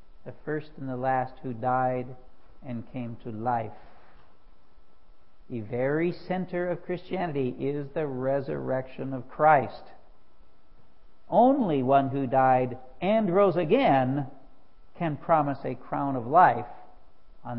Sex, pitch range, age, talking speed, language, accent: male, 130-180 Hz, 60-79, 120 wpm, English, American